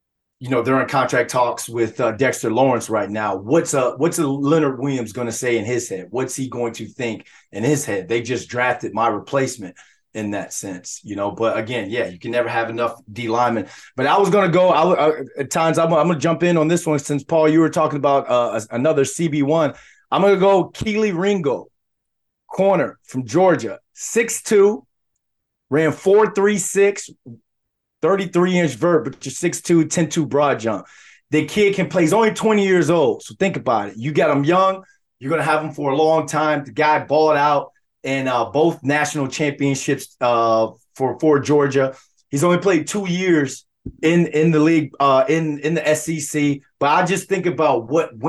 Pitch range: 125-170 Hz